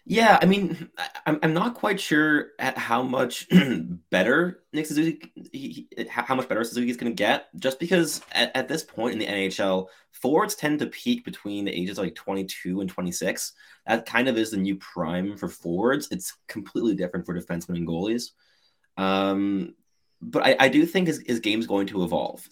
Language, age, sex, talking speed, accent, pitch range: English, 20-39, male, 195 wpm, American, 95-130 Hz